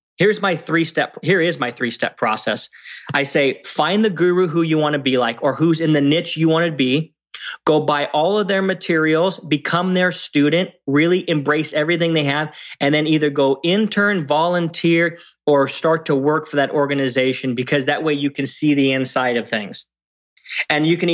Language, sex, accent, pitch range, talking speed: English, male, American, 145-170 Hz, 195 wpm